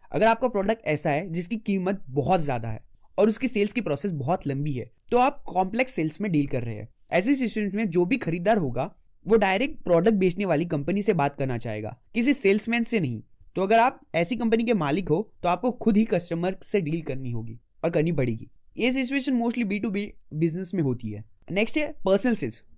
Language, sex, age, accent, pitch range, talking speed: Hindi, male, 20-39, native, 150-225 Hz, 205 wpm